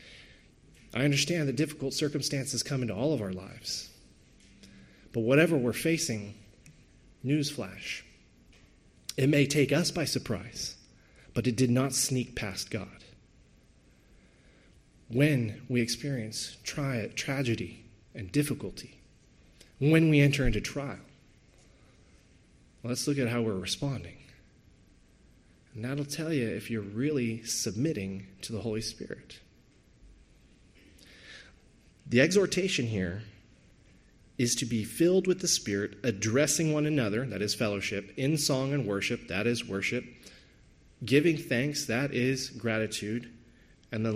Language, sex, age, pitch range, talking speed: English, male, 30-49, 105-140 Hz, 120 wpm